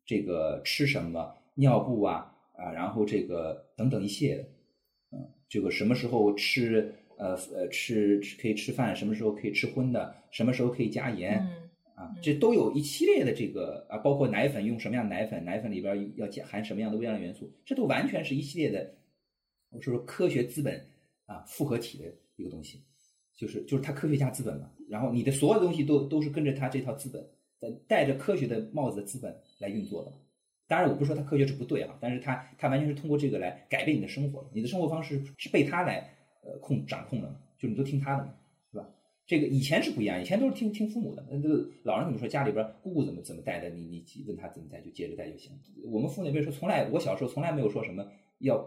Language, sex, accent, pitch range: Chinese, male, native, 110-145 Hz